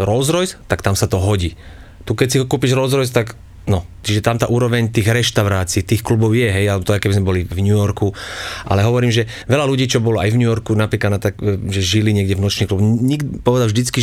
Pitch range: 100-115 Hz